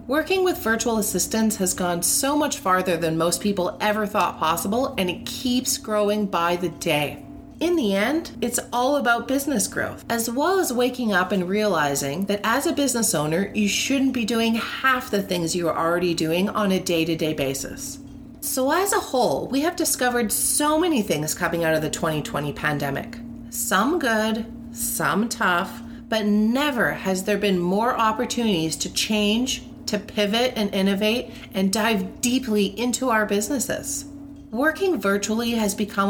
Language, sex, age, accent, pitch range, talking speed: English, female, 30-49, American, 185-250 Hz, 170 wpm